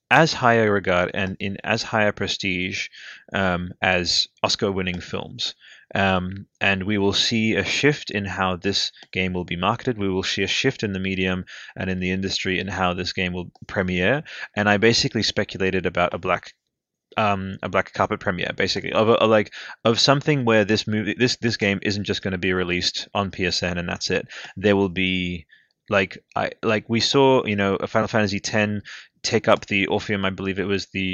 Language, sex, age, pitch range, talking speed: English, male, 20-39, 95-105 Hz, 205 wpm